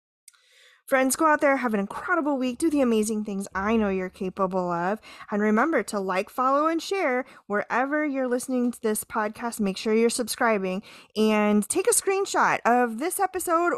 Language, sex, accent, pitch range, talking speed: English, female, American, 200-275 Hz, 180 wpm